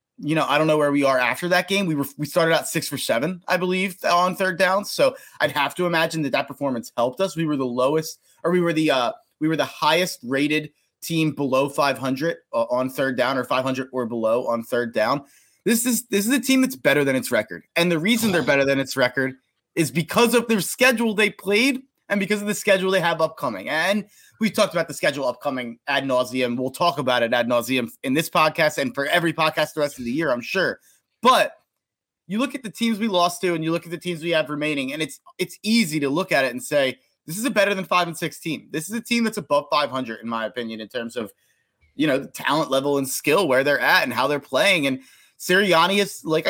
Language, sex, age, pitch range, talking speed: English, male, 30-49, 140-200 Hz, 250 wpm